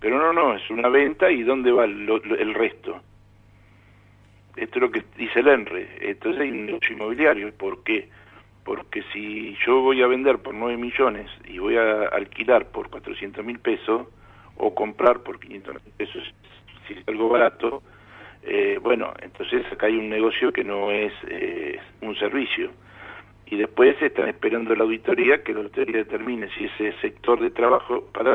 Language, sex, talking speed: Spanish, male, 170 wpm